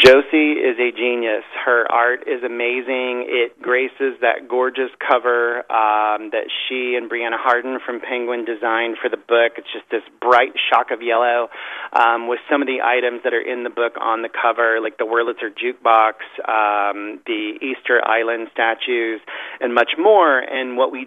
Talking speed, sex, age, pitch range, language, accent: 175 wpm, male, 30-49, 115-130 Hz, English, American